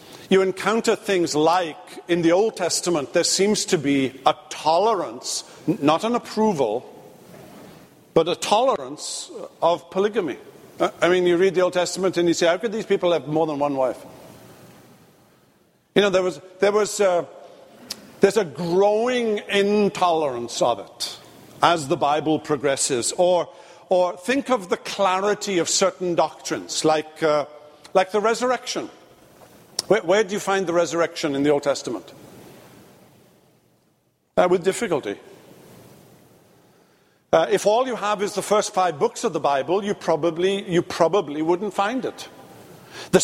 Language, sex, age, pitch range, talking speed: English, male, 50-69, 155-195 Hz, 145 wpm